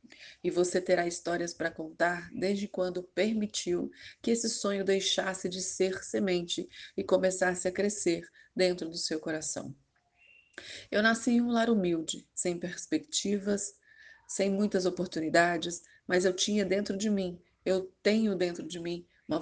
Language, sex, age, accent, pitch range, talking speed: Portuguese, female, 30-49, Brazilian, 175-210 Hz, 145 wpm